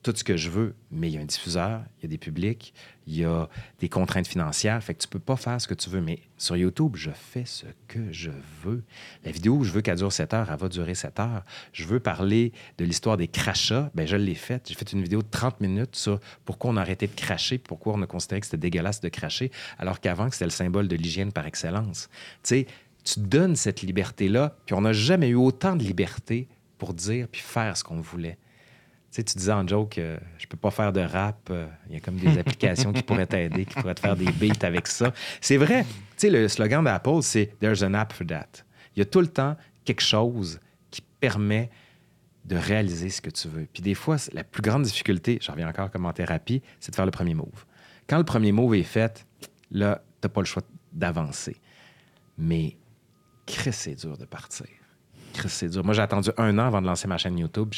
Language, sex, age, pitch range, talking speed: French, male, 30-49, 90-120 Hz, 245 wpm